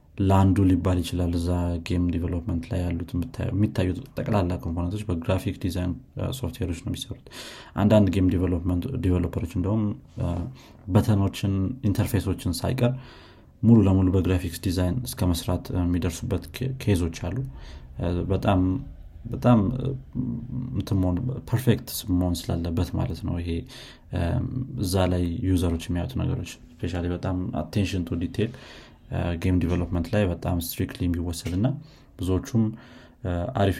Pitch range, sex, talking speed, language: 85-115 Hz, male, 90 wpm, Amharic